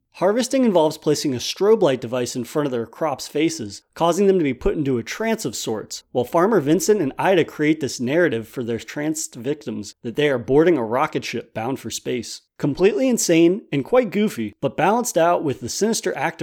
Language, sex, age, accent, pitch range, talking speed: English, male, 30-49, American, 130-180 Hz, 210 wpm